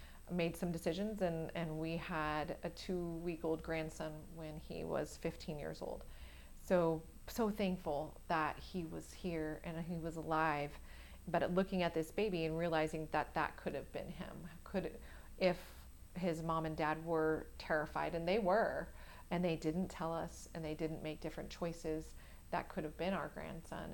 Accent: American